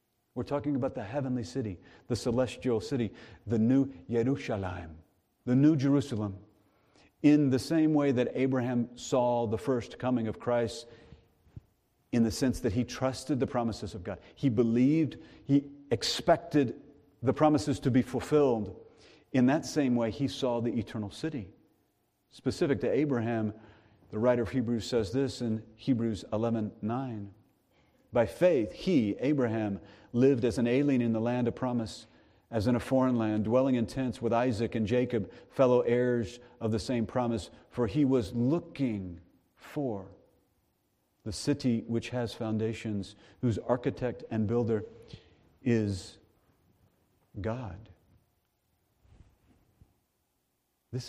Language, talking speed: English, 135 wpm